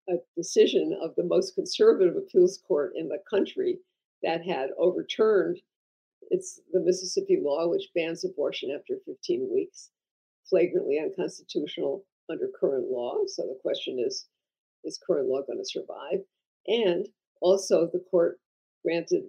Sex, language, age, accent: female, English, 50-69, American